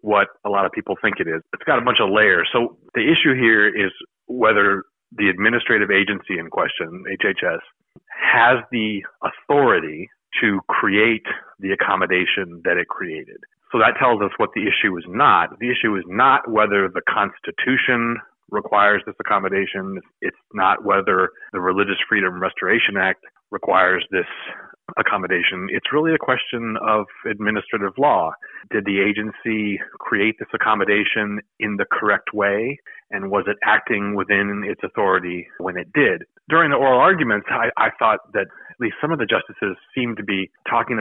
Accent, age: American, 40-59